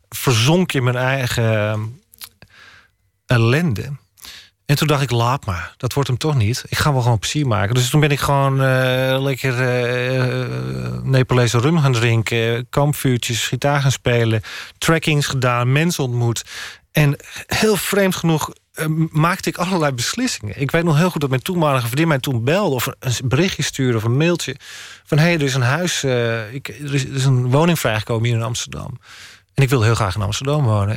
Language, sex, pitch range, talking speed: Dutch, male, 115-150 Hz, 195 wpm